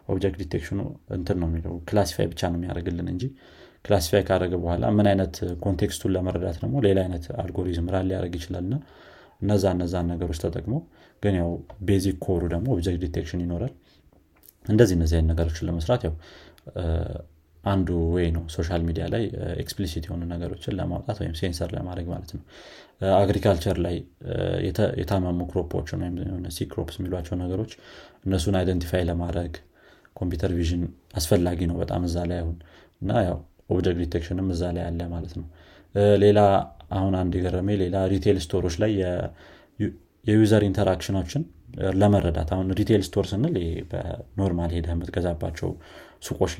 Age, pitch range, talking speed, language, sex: 30-49, 85-100 Hz, 115 wpm, Amharic, male